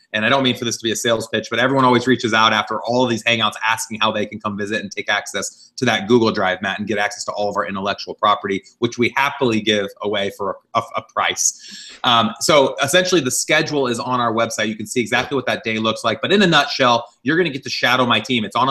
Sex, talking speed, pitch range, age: male, 275 wpm, 110-125 Hz, 30-49